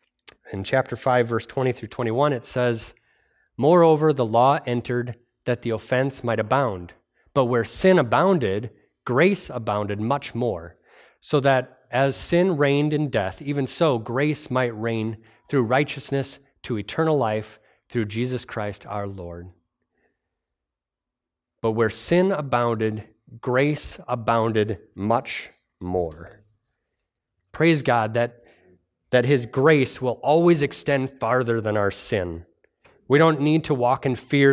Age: 30-49